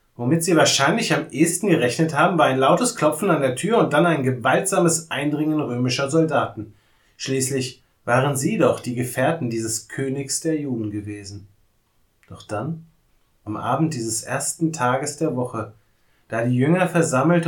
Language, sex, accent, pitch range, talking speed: German, male, German, 115-150 Hz, 155 wpm